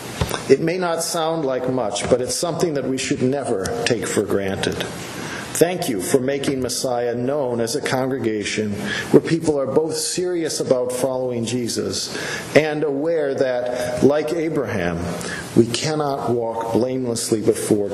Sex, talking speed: male, 145 wpm